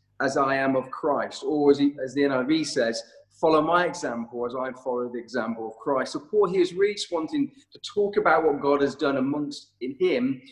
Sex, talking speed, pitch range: male, 220 wpm, 115-175 Hz